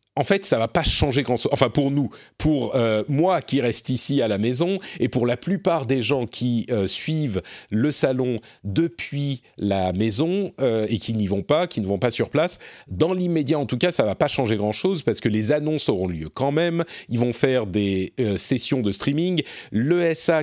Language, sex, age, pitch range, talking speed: French, male, 40-59, 110-155 Hz, 215 wpm